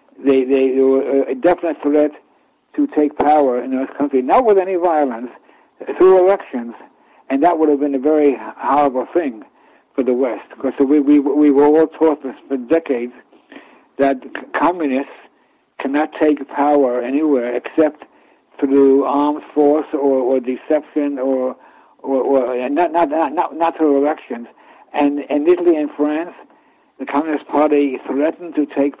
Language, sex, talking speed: English, male, 155 wpm